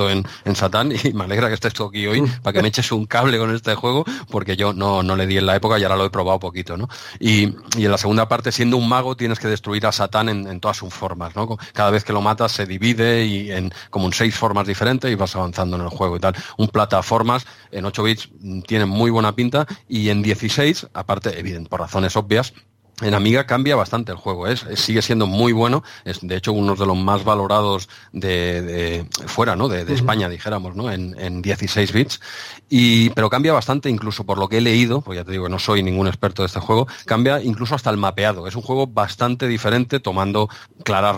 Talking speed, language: 235 wpm, Spanish